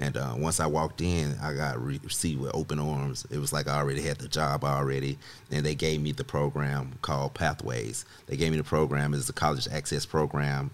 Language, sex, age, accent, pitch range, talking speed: English, male, 30-49, American, 75-90 Hz, 225 wpm